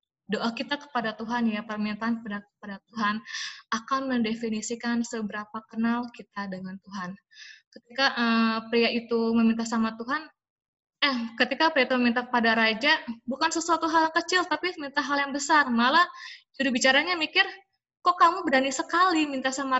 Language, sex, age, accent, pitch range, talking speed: Indonesian, female, 20-39, native, 215-275 Hz, 145 wpm